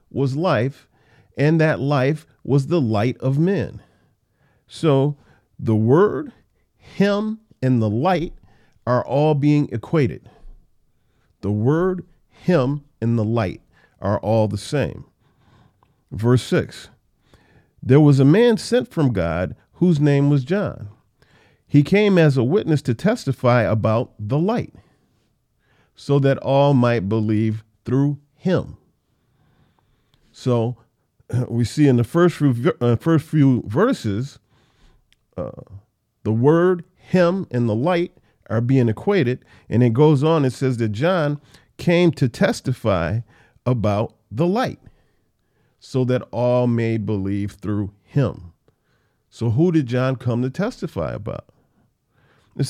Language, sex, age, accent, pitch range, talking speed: English, male, 40-59, American, 115-155 Hz, 125 wpm